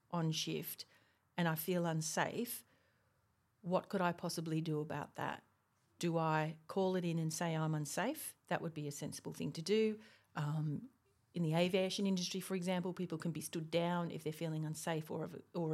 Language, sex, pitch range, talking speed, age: English, female, 155-180 Hz, 180 wpm, 40-59